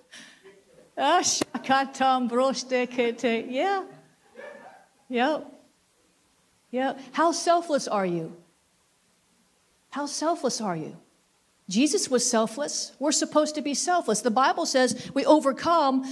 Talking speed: 90 wpm